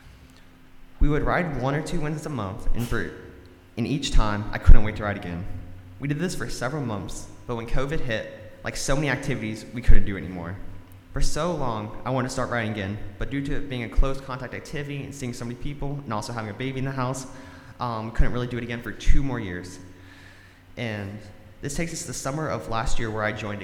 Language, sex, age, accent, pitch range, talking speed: English, male, 20-39, American, 95-135 Hz, 235 wpm